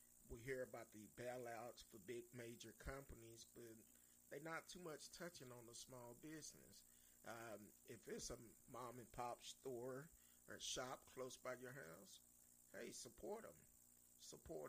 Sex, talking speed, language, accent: male, 150 wpm, English, American